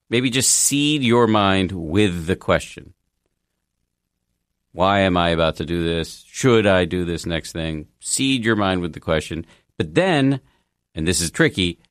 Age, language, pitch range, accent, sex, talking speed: 50-69, English, 75-100 Hz, American, male, 165 wpm